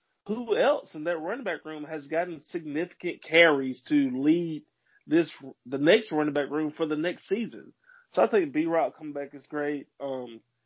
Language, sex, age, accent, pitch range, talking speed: English, male, 20-39, American, 130-165 Hz, 185 wpm